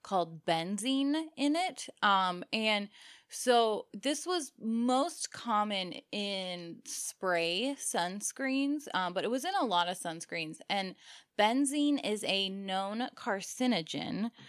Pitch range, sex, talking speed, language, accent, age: 185-245 Hz, female, 120 wpm, English, American, 10-29